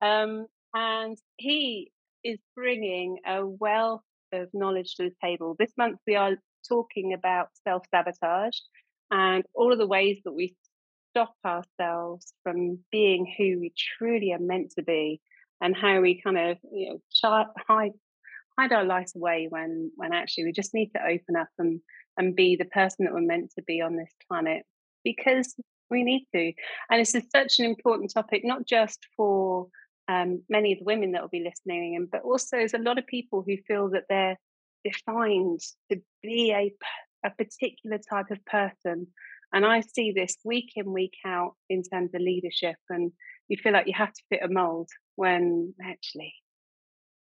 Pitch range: 180-230 Hz